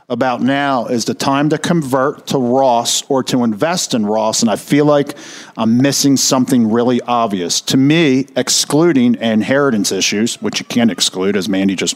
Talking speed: 175 wpm